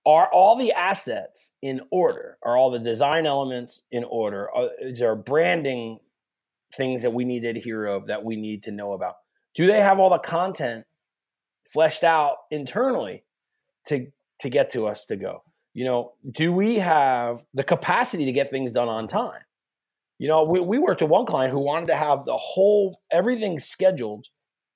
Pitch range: 130-190 Hz